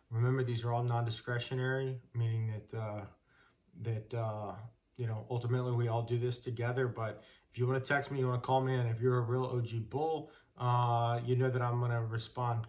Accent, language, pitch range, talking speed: American, English, 115-130 Hz, 210 wpm